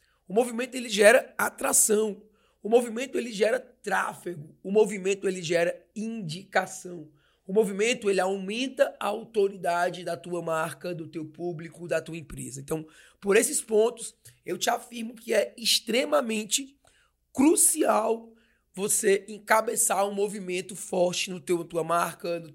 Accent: Brazilian